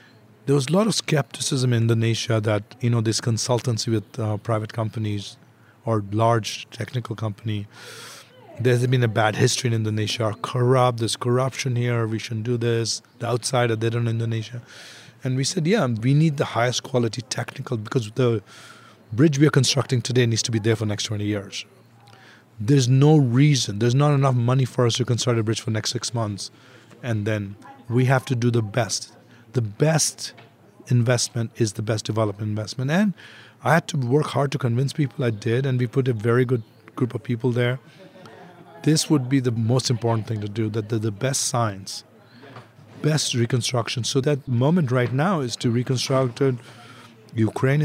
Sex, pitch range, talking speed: male, 115-130 Hz, 185 wpm